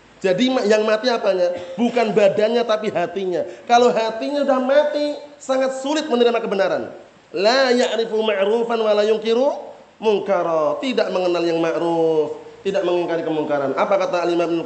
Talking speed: 140 wpm